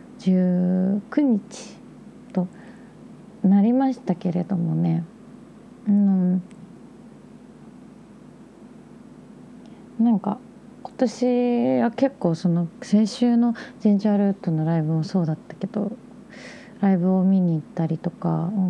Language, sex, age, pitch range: Japanese, female, 30-49, 185-235 Hz